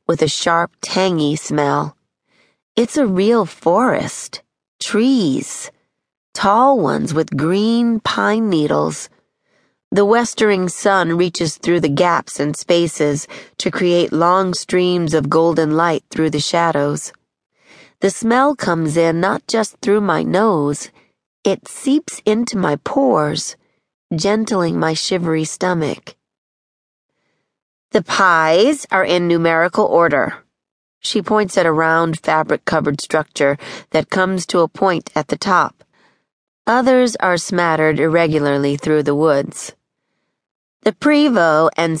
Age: 40-59